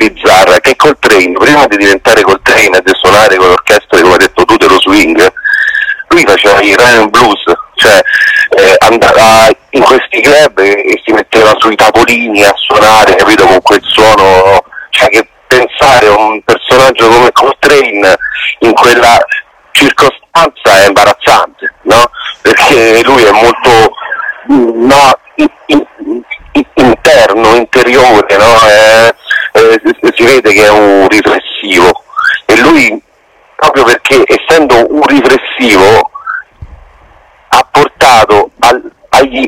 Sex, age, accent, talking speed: male, 40-59, native, 125 wpm